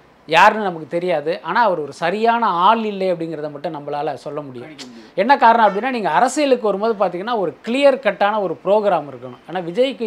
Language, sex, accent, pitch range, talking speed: Tamil, male, native, 165-225 Hz, 175 wpm